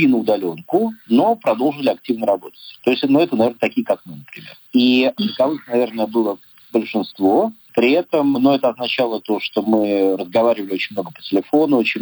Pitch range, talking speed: 105-145 Hz, 175 wpm